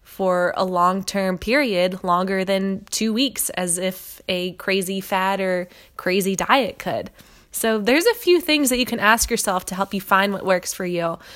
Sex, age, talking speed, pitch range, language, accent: female, 20-39, 185 wpm, 190-225 Hz, English, American